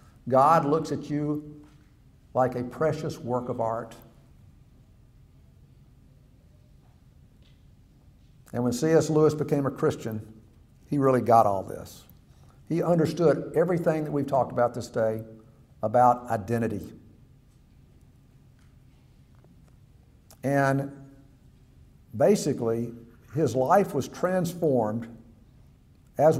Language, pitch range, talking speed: English, 125-170 Hz, 90 wpm